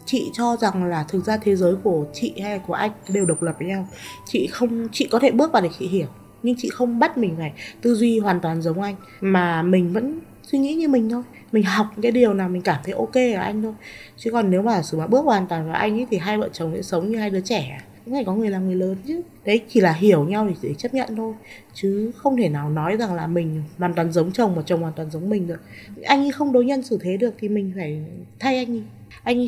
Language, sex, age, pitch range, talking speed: Vietnamese, female, 20-39, 185-255 Hz, 270 wpm